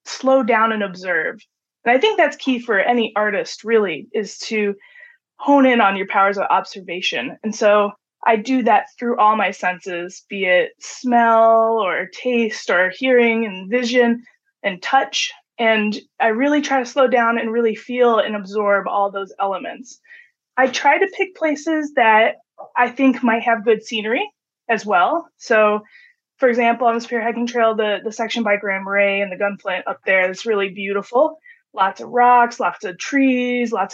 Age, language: 20-39, English